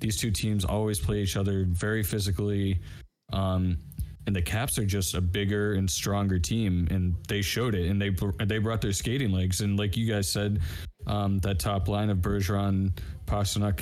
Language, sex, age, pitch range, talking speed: English, male, 20-39, 95-105 Hz, 190 wpm